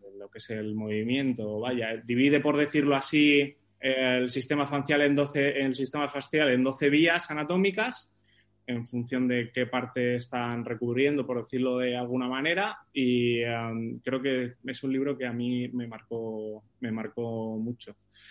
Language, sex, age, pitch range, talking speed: Spanish, male, 20-39, 125-155 Hz, 160 wpm